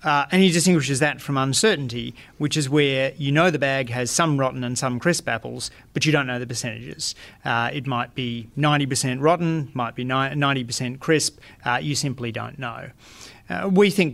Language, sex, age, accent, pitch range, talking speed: English, male, 30-49, Australian, 120-145 Hz, 190 wpm